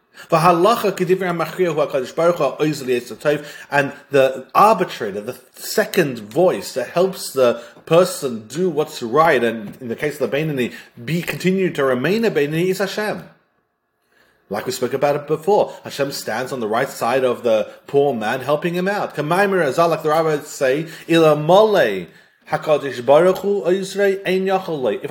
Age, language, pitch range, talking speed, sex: 30-49, English, 140-185 Hz, 125 wpm, male